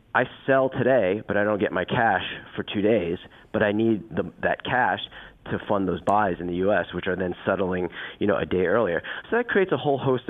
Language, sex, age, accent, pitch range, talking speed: English, male, 30-49, American, 95-110 Hz, 245 wpm